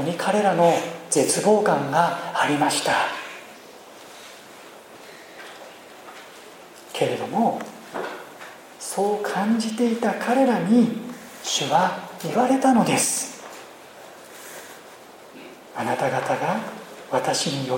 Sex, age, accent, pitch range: male, 40-59, native, 205-260 Hz